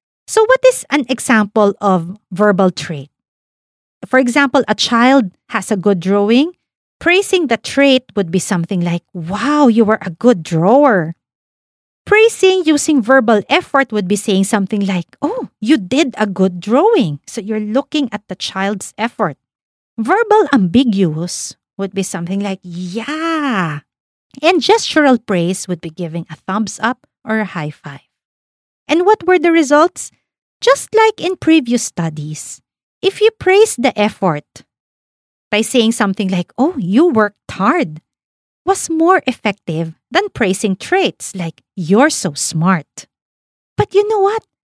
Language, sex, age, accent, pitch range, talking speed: English, female, 40-59, Filipino, 185-310 Hz, 145 wpm